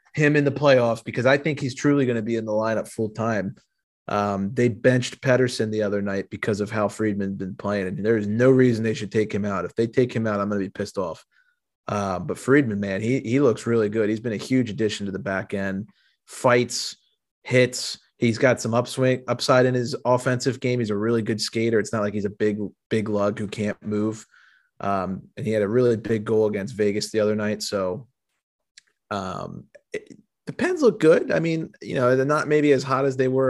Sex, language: male, English